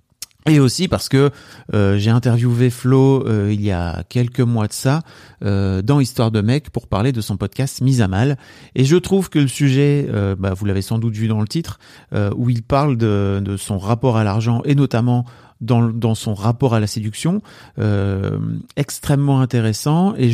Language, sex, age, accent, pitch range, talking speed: French, male, 40-59, French, 110-140 Hz, 200 wpm